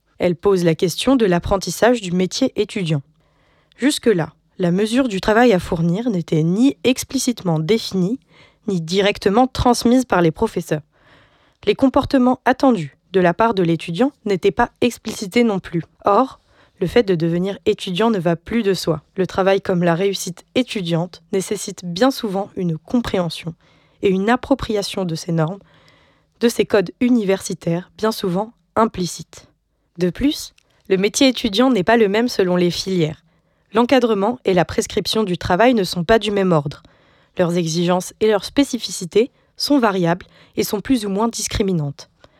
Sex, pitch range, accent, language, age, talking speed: female, 175-230 Hz, French, French, 20-39, 155 wpm